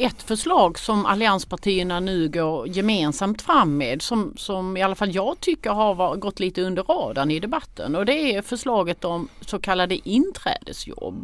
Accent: native